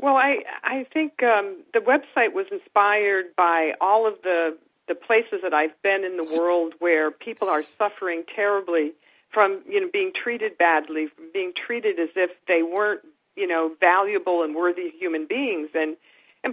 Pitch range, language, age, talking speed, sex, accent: 175-280 Hz, English, 50-69, 175 wpm, female, American